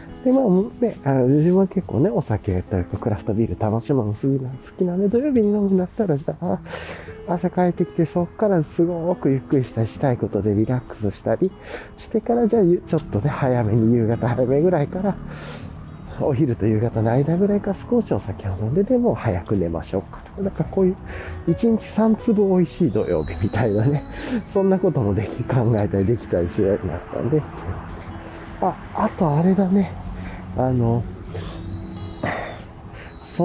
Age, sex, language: 40-59, male, Japanese